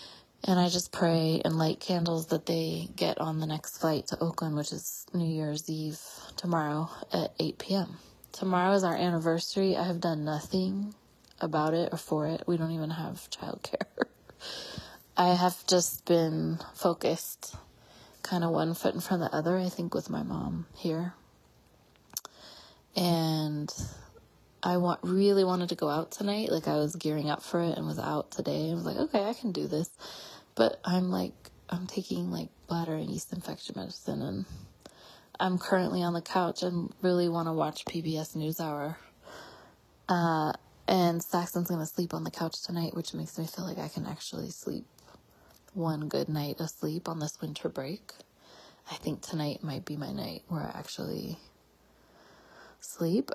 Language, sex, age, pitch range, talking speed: English, female, 20-39, 155-180 Hz, 170 wpm